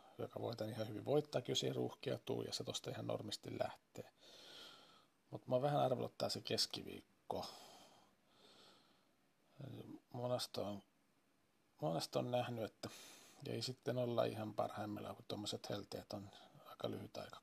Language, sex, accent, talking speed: Finnish, male, native, 135 wpm